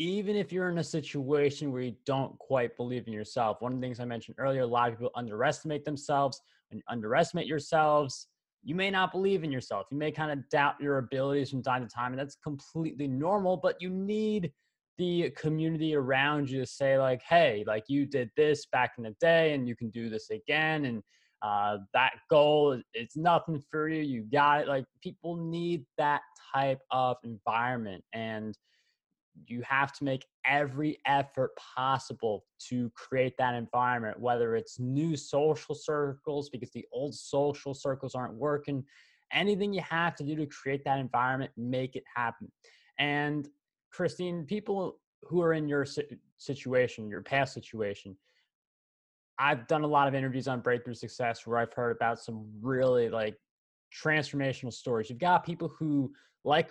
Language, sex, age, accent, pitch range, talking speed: English, male, 20-39, American, 125-155 Hz, 170 wpm